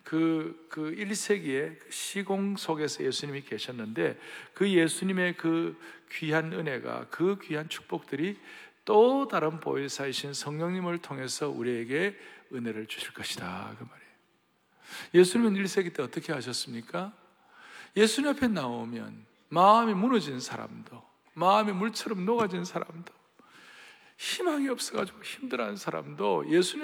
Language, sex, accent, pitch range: Korean, male, native, 160-220 Hz